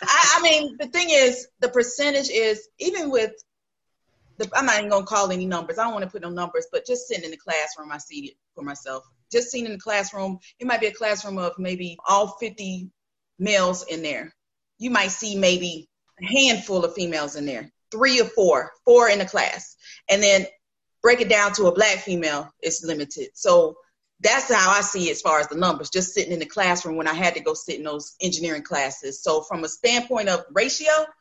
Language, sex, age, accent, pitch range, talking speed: English, female, 30-49, American, 175-235 Hz, 220 wpm